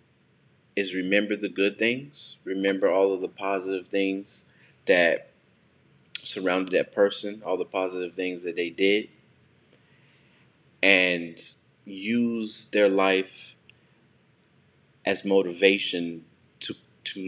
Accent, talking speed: American, 105 wpm